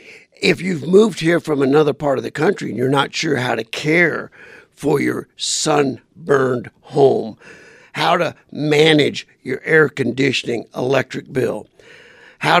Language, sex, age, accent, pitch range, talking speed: English, male, 50-69, American, 145-180 Hz, 145 wpm